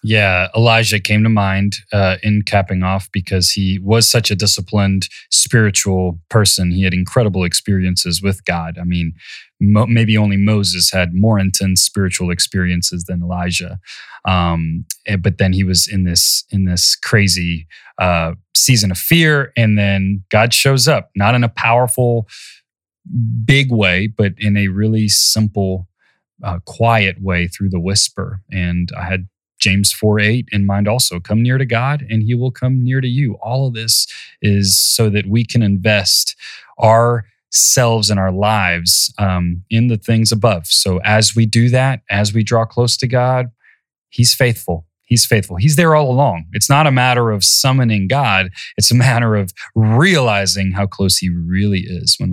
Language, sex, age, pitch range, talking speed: English, male, 30-49, 95-115 Hz, 165 wpm